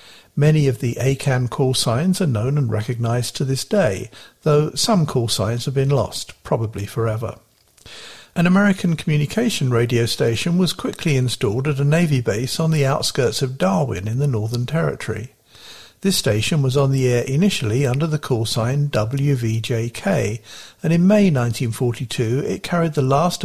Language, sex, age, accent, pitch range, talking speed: English, male, 50-69, British, 115-150 Hz, 160 wpm